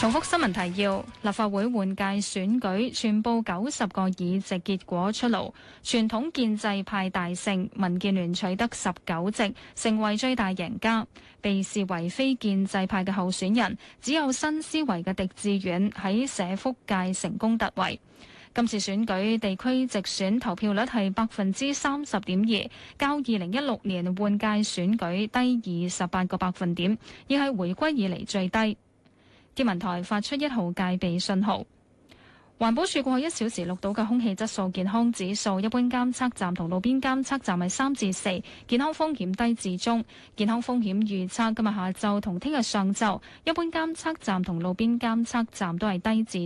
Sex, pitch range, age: female, 190-235 Hz, 20-39